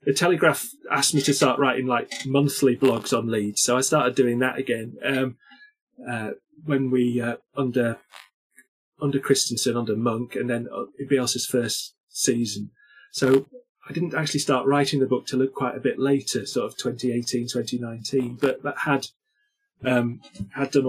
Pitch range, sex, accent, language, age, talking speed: 125-155 Hz, male, British, English, 30-49, 170 wpm